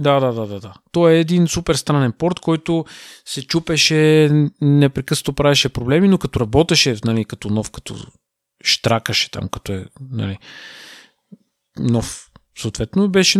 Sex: male